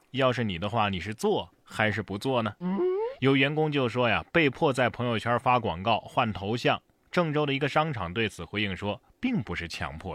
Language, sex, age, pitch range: Chinese, male, 30-49, 105-150 Hz